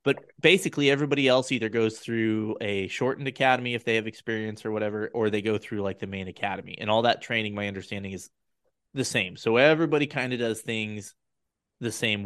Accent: American